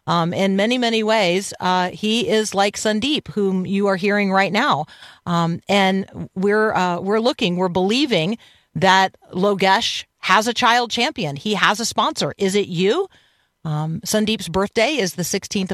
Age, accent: 40-59, American